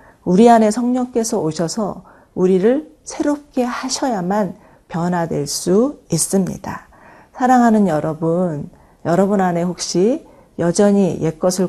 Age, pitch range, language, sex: 40-59, 165-220 Hz, Korean, female